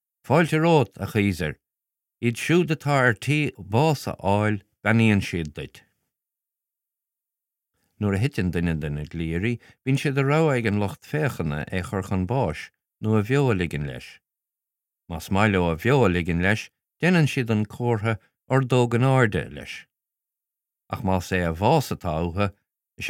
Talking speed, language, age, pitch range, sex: 140 wpm, Filipino, 50-69, 90-120 Hz, male